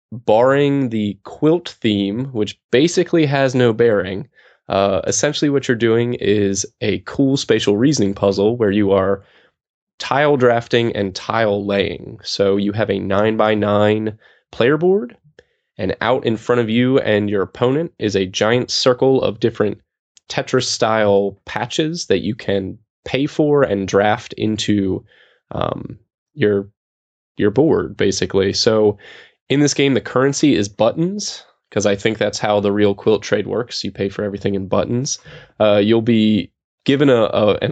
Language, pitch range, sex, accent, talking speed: English, 100-130 Hz, male, American, 155 wpm